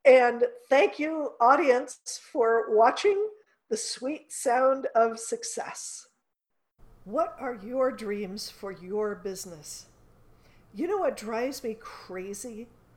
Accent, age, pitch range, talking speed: American, 50-69, 210-260 Hz, 110 wpm